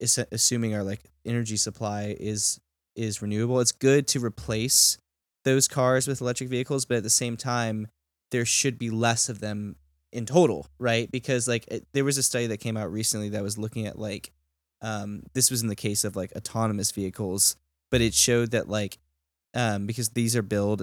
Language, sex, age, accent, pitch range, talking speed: English, male, 10-29, American, 105-120 Hz, 195 wpm